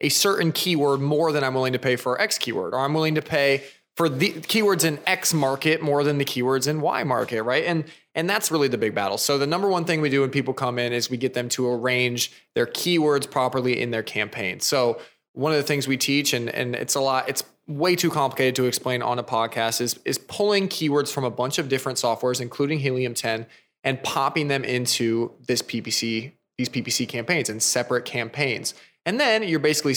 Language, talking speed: English, 220 wpm